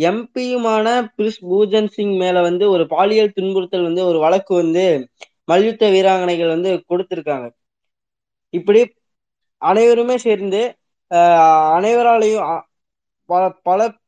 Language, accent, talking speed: Tamil, native, 100 wpm